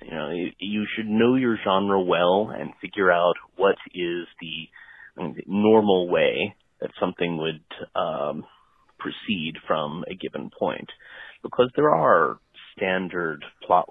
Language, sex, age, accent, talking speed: English, male, 30-49, American, 145 wpm